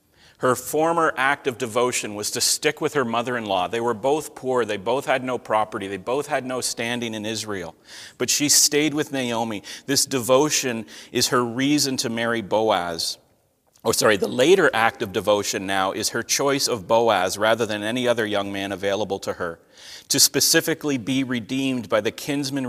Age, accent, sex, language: 40-59, American, male, English